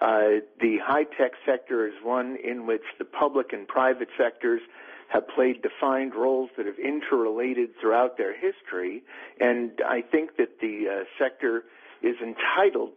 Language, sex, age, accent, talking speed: English, male, 50-69, American, 150 wpm